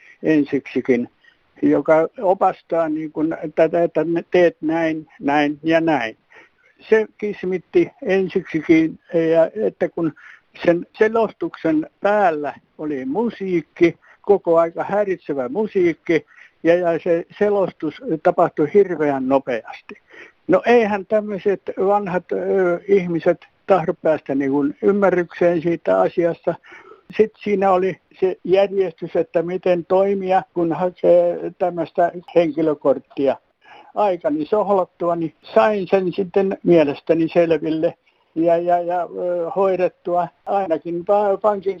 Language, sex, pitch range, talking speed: Finnish, male, 165-200 Hz, 100 wpm